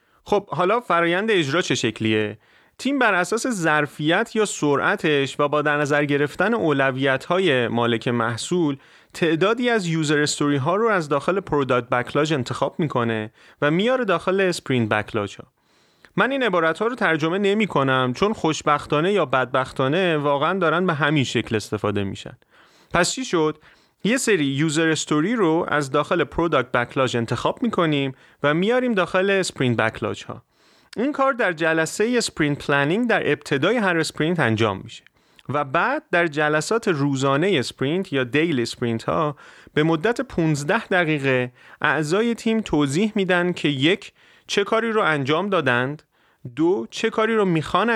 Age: 30-49